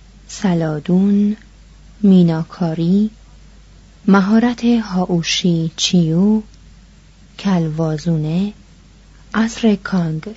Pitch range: 170-210 Hz